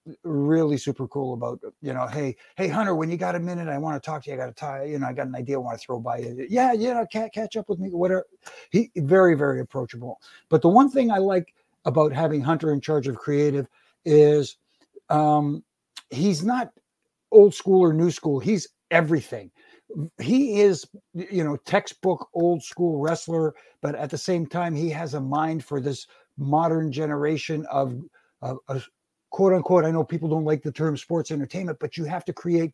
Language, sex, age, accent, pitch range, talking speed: English, male, 60-79, American, 145-175 Hz, 205 wpm